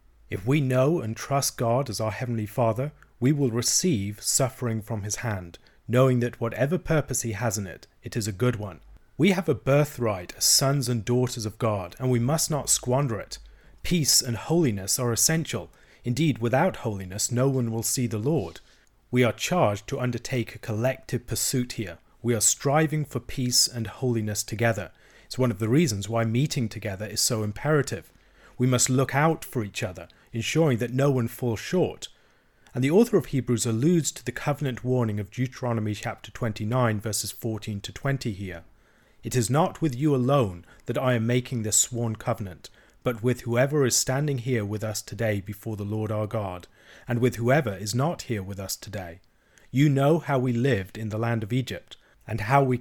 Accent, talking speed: British, 190 wpm